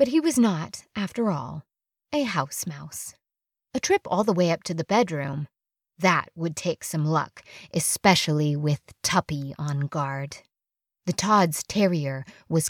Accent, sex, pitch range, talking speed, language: American, female, 165-235 Hz, 150 wpm, English